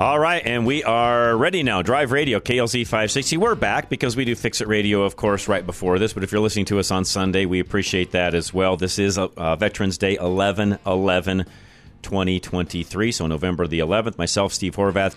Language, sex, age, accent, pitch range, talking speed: English, male, 40-59, American, 90-110 Hz, 210 wpm